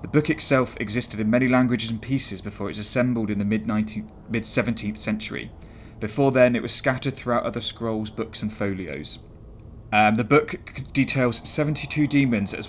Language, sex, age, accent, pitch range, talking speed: English, male, 20-39, British, 105-125 Hz, 175 wpm